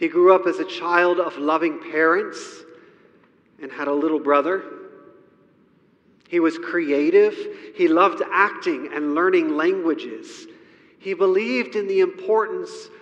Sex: male